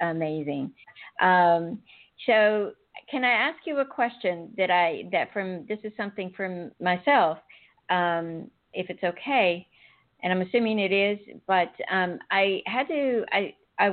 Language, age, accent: English, 50-69, American